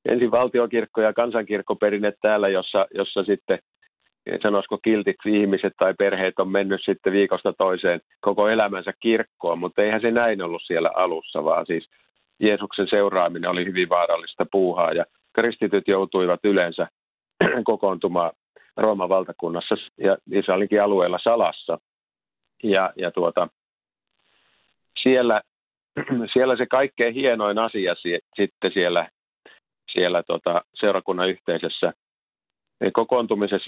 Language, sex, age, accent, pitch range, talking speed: Finnish, male, 50-69, native, 95-115 Hz, 115 wpm